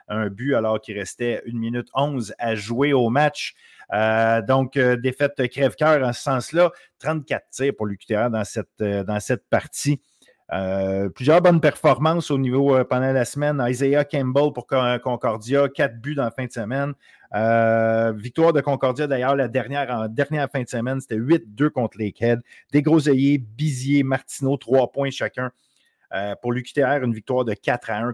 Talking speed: 175 wpm